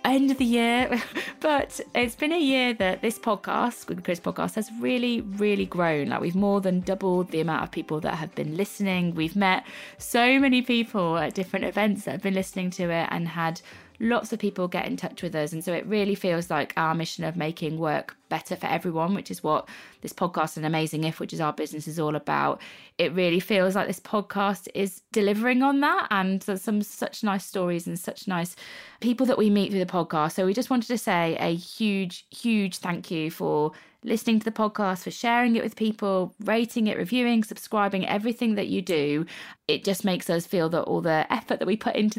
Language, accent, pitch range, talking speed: English, British, 170-215 Hz, 220 wpm